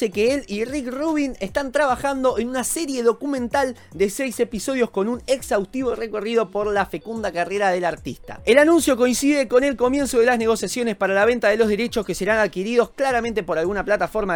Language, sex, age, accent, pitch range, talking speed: Spanish, male, 20-39, Argentinian, 210-260 Hz, 190 wpm